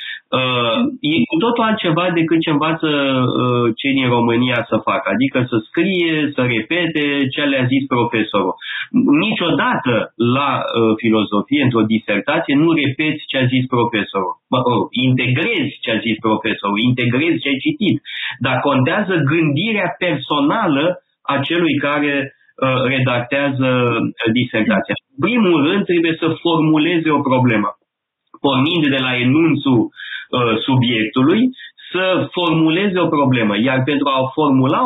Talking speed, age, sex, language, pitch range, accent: 135 wpm, 30-49, male, Romanian, 125-165 Hz, native